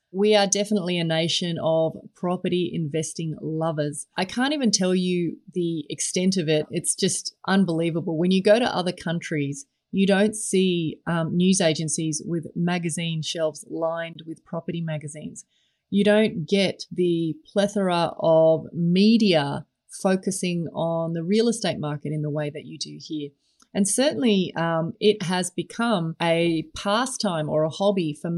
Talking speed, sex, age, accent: 150 wpm, female, 30-49, Australian